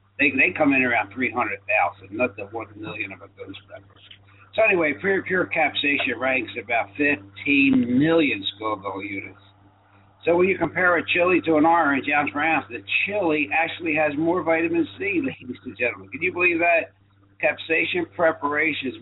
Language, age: English, 60-79